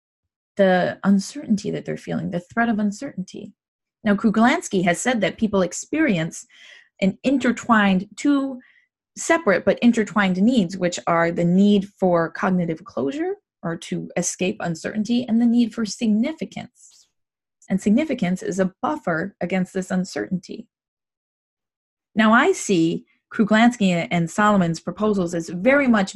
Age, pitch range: 20-39, 170-225 Hz